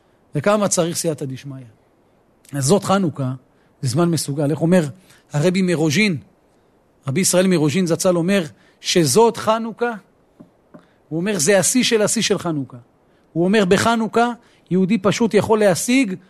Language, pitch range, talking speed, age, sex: Hebrew, 160-210 Hz, 135 wpm, 40-59, male